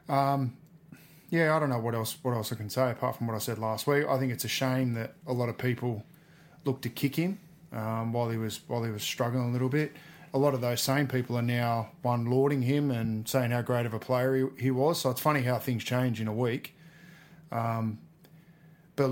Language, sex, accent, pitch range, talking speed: English, male, Australian, 115-140 Hz, 240 wpm